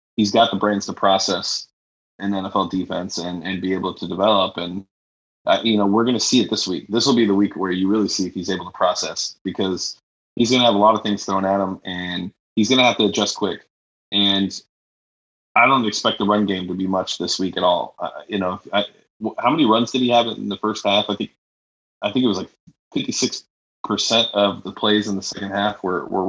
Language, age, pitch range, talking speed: English, 20-39, 95-105 Hz, 240 wpm